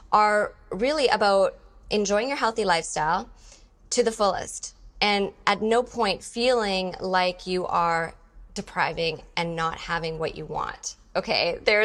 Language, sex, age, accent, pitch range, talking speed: English, female, 20-39, American, 185-240 Hz, 135 wpm